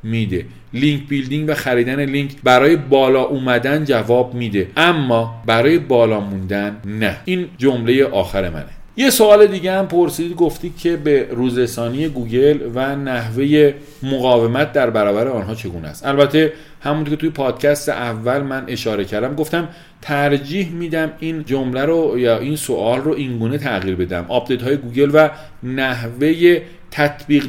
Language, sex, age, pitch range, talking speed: Persian, male, 40-59, 120-150 Hz, 145 wpm